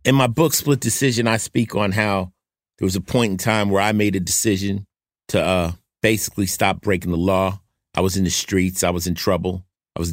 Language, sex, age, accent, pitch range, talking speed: English, male, 50-69, American, 85-100 Hz, 225 wpm